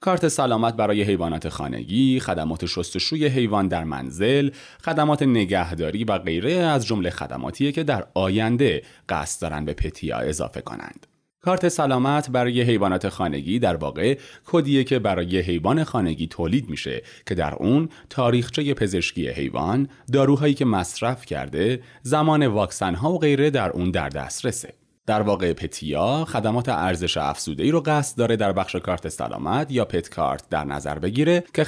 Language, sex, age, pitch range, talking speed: Persian, male, 30-49, 85-140 Hz, 150 wpm